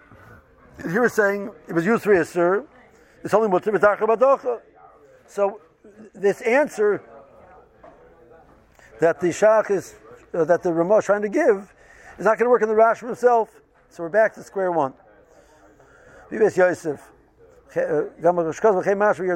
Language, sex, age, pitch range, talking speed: English, male, 60-79, 165-220 Hz, 145 wpm